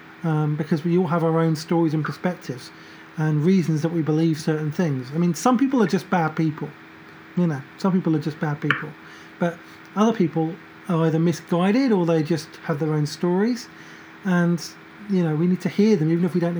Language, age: English, 30-49